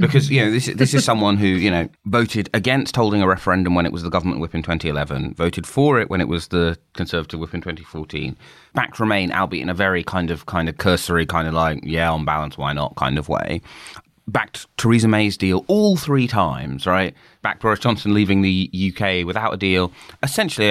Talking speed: 215 wpm